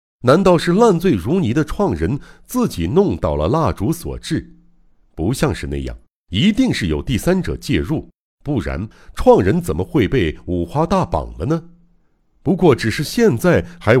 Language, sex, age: Chinese, male, 60-79